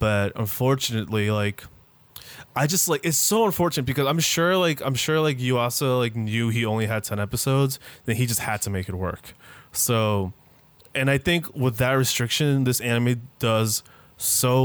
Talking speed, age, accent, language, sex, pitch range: 180 wpm, 20-39, American, English, male, 110-140 Hz